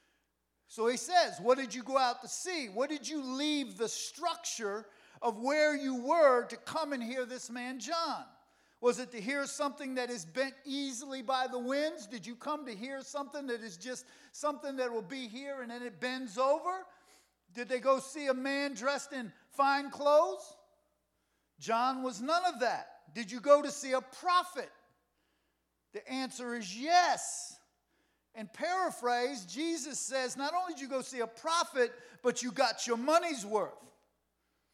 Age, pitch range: 50-69, 240-300 Hz